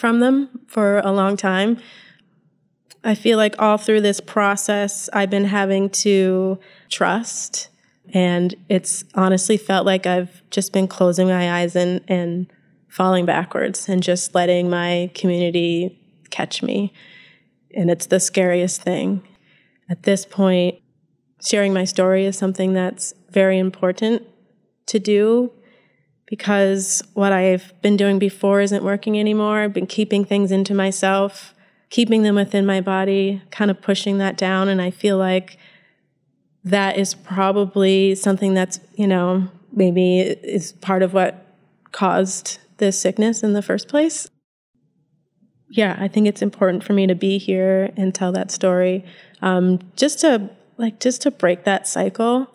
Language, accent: English, American